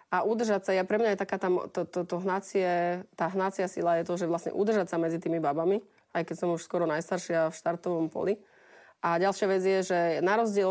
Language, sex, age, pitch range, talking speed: Slovak, female, 30-49, 170-195 Hz, 230 wpm